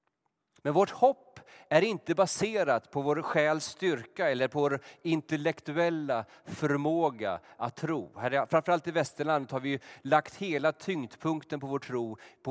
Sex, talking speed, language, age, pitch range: male, 150 wpm, Swedish, 30-49, 125-160 Hz